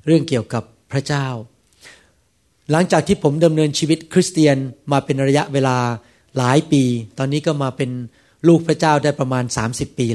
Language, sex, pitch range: Thai, male, 115-155 Hz